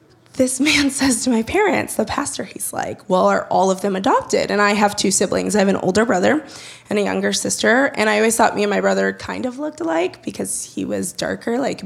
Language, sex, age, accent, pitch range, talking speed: English, female, 20-39, American, 195-255 Hz, 240 wpm